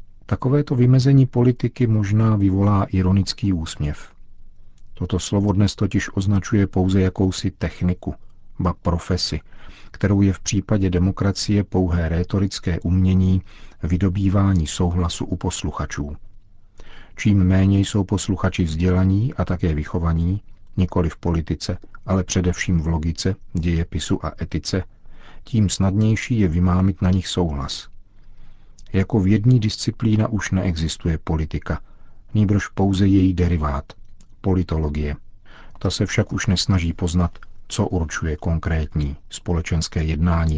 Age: 50-69